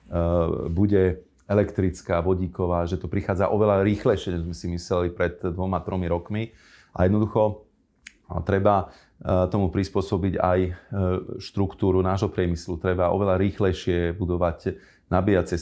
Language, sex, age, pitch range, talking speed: Slovak, male, 40-59, 90-105 Hz, 120 wpm